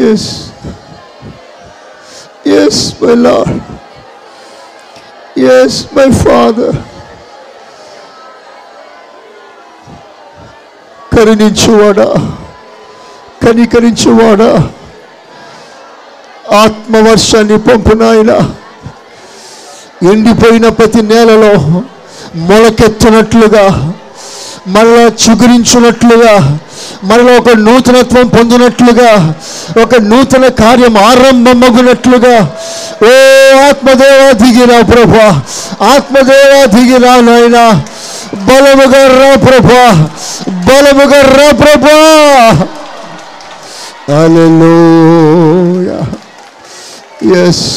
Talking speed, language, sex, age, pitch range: 45 wpm, Telugu, male, 50-69, 215-265 Hz